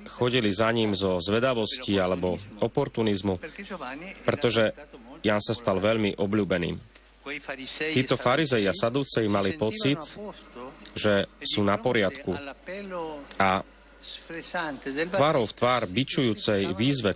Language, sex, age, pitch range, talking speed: Slovak, male, 30-49, 100-135 Hz, 100 wpm